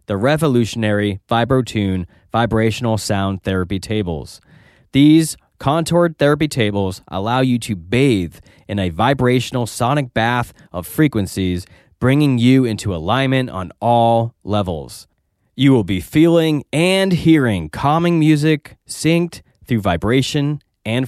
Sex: male